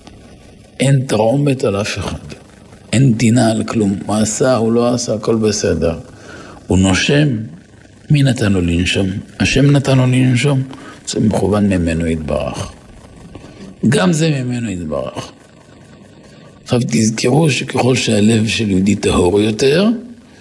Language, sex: Hebrew, male